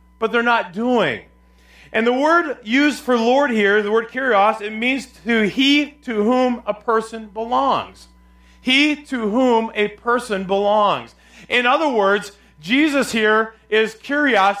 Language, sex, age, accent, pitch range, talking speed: English, male, 40-59, American, 205-260 Hz, 150 wpm